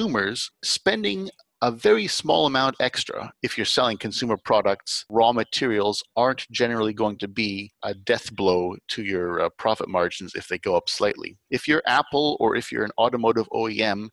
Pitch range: 100-125 Hz